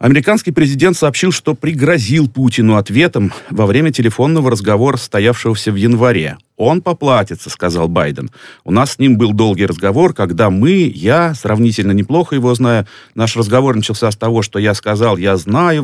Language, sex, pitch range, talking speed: Russian, male, 100-135 Hz, 160 wpm